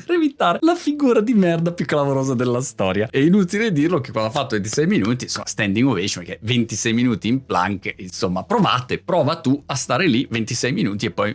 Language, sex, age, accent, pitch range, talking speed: Italian, male, 30-49, native, 105-145 Hz, 200 wpm